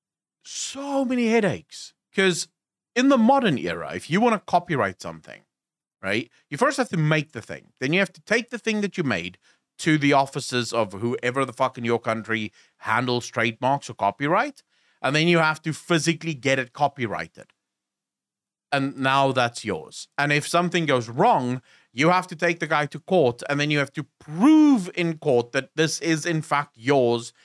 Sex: male